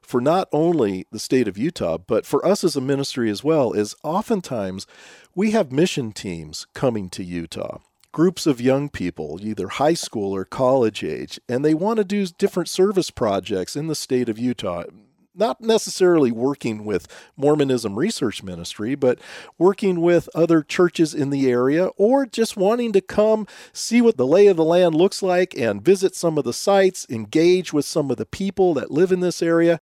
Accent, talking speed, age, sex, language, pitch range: American, 185 wpm, 40-59, male, English, 140-200 Hz